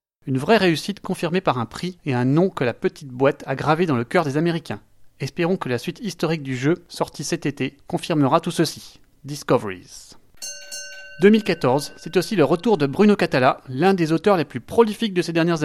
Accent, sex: French, male